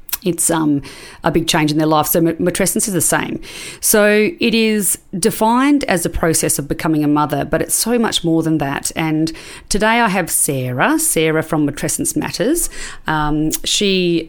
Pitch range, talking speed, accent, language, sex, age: 150-175 Hz, 175 wpm, Australian, English, female, 40-59